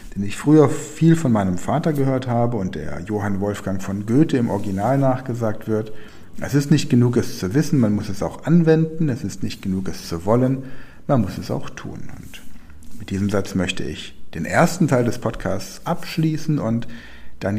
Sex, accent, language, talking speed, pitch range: male, German, German, 195 wpm, 95-125 Hz